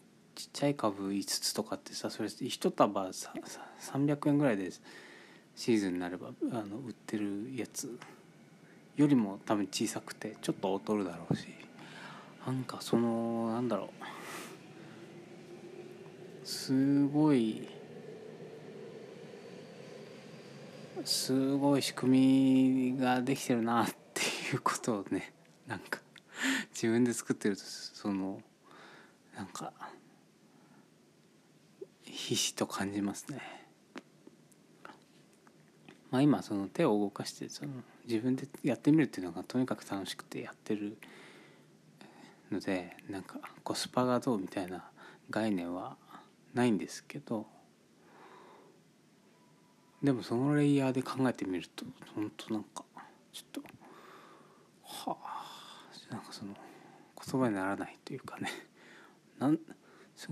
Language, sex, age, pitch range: Japanese, male, 20-39, 105-140 Hz